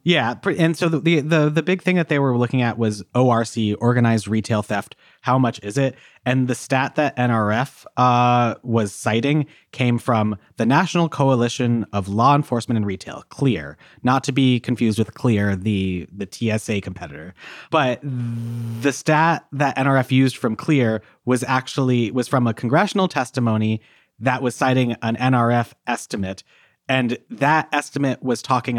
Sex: male